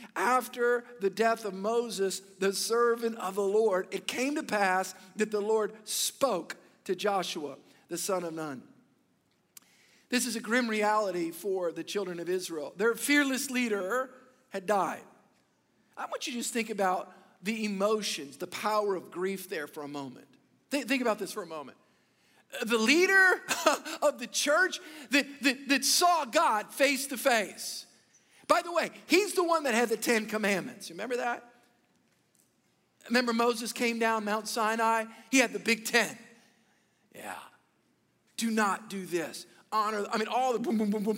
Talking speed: 165 wpm